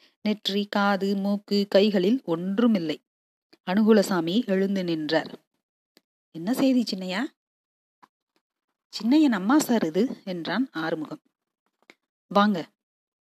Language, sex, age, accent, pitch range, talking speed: Tamil, female, 30-49, native, 185-250 Hz, 80 wpm